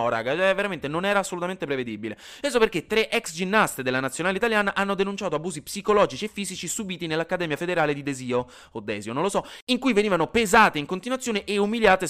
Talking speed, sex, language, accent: 195 wpm, male, Italian, native